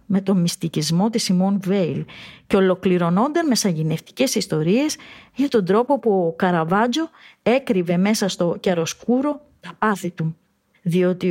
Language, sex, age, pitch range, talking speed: Greek, female, 30-49, 175-240 Hz, 140 wpm